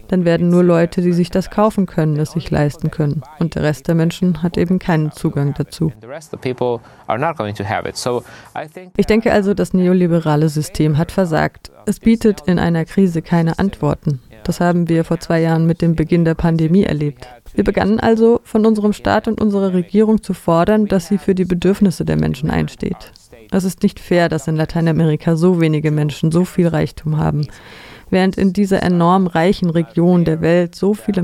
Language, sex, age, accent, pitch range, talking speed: German, female, 30-49, German, 150-190 Hz, 180 wpm